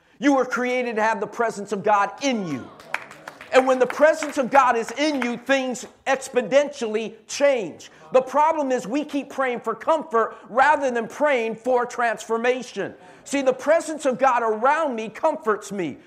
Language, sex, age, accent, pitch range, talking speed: English, male, 50-69, American, 235-285 Hz, 170 wpm